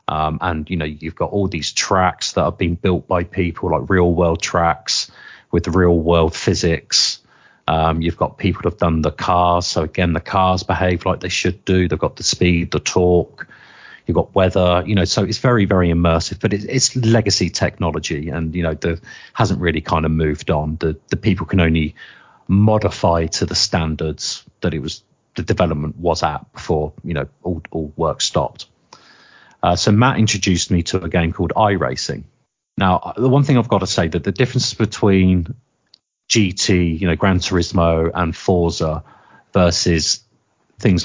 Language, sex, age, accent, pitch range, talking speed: English, male, 30-49, British, 80-95 Hz, 185 wpm